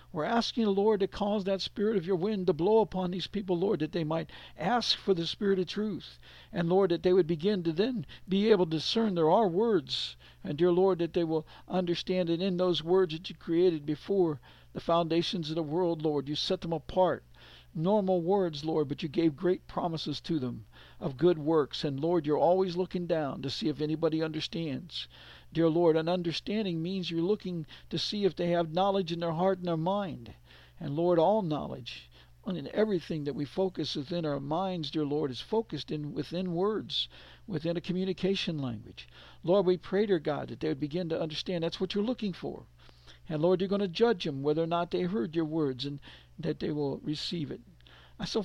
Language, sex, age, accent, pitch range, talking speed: English, male, 60-79, American, 155-190 Hz, 210 wpm